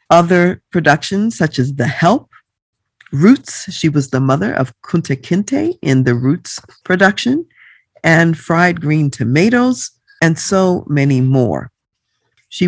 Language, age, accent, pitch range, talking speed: English, 50-69, American, 130-175 Hz, 130 wpm